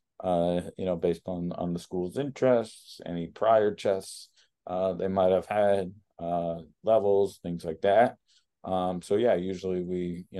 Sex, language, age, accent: male, English, 20-39, American